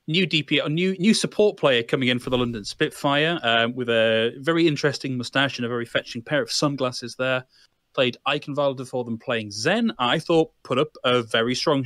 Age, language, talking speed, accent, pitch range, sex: 30-49, English, 195 wpm, British, 120-160 Hz, male